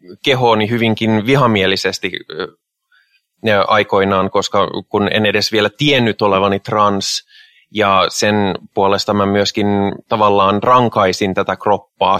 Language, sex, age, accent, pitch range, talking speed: Finnish, male, 20-39, native, 100-120 Hz, 105 wpm